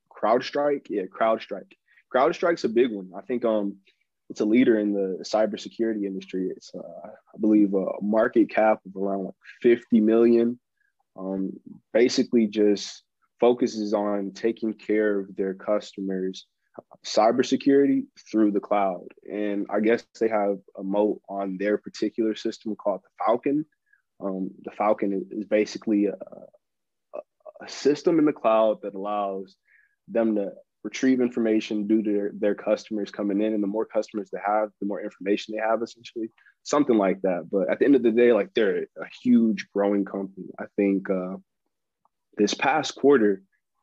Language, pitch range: English, 100-120 Hz